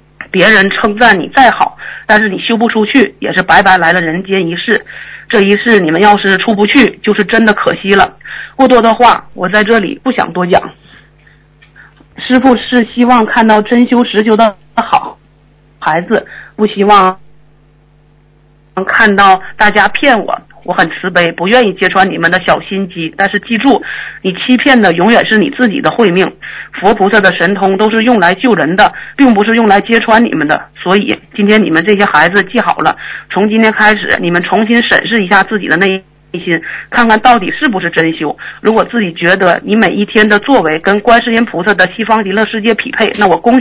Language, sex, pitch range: Chinese, female, 180-230 Hz